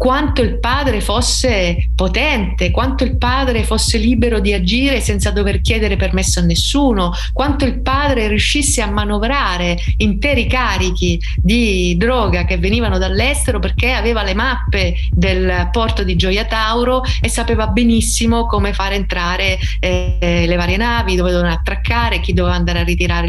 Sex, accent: female, native